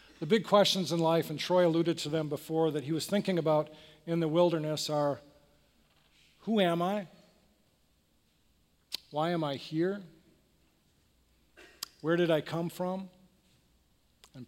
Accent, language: American, English